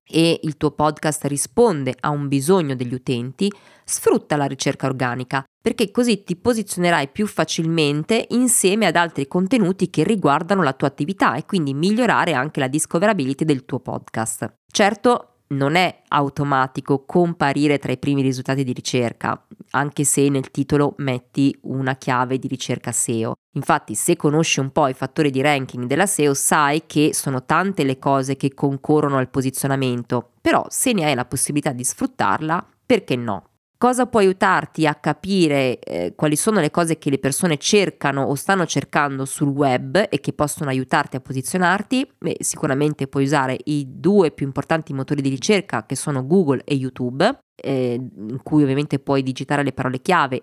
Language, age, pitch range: Italian, 20-39, 135-170 Hz